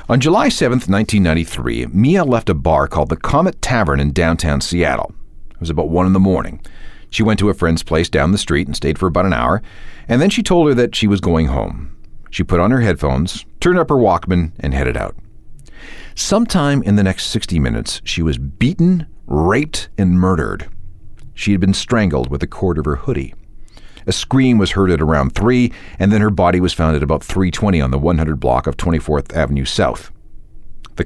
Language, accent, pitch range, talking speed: English, American, 80-115 Hz, 205 wpm